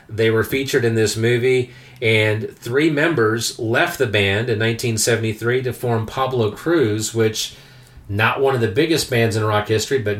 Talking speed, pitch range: 170 wpm, 105-135 Hz